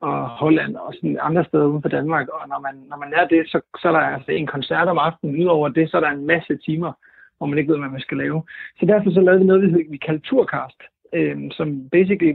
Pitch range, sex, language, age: 150-175 Hz, male, Danish, 60-79